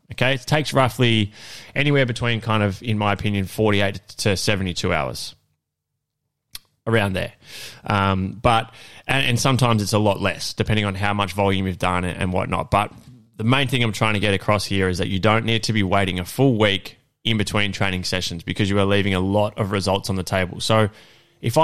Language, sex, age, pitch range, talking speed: English, male, 20-39, 95-115 Hz, 205 wpm